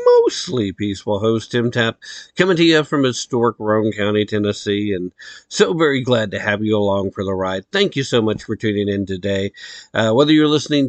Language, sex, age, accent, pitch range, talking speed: English, male, 50-69, American, 105-130 Hz, 200 wpm